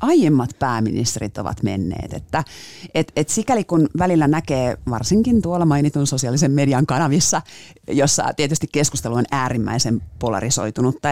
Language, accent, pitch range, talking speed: Finnish, native, 120-150 Hz, 125 wpm